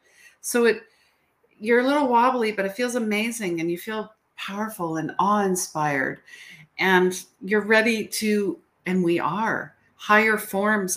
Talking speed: 140 wpm